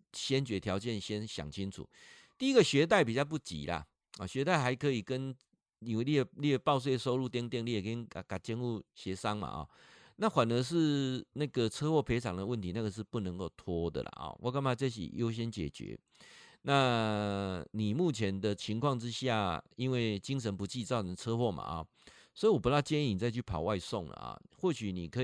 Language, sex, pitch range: Chinese, male, 95-130 Hz